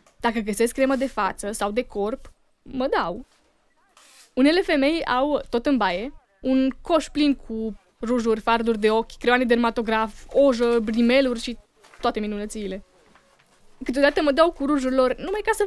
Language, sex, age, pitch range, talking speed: Romanian, female, 20-39, 225-280 Hz, 150 wpm